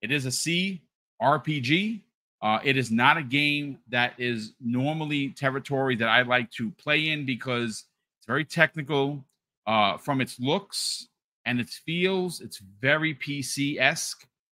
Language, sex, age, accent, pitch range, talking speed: English, male, 40-59, American, 120-150 Hz, 140 wpm